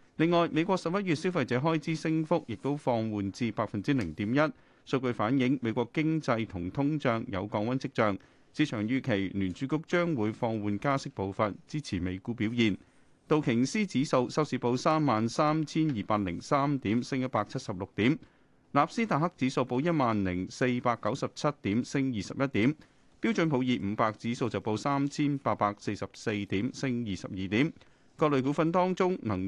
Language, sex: Chinese, male